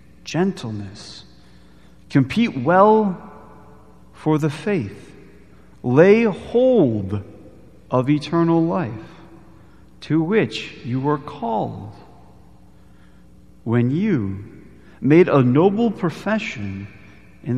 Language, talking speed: English, 80 wpm